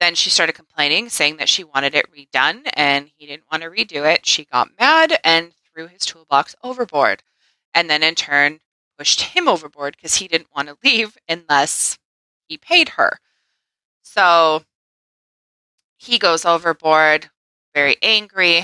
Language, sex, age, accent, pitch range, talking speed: English, female, 20-39, American, 150-180 Hz, 155 wpm